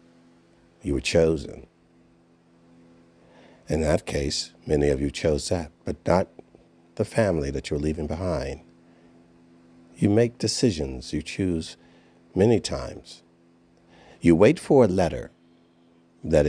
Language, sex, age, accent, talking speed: English, male, 50-69, American, 115 wpm